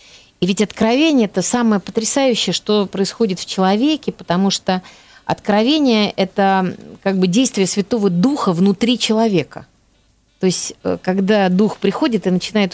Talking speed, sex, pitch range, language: 130 wpm, female, 175-220 Hz, Russian